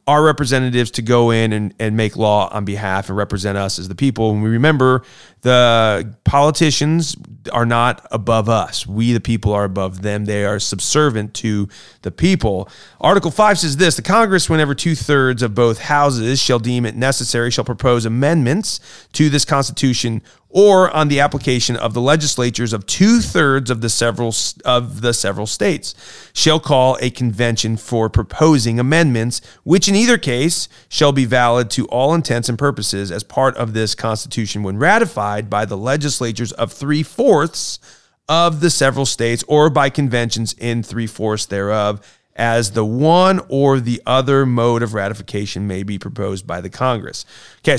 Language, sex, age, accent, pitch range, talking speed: English, male, 30-49, American, 110-145 Hz, 170 wpm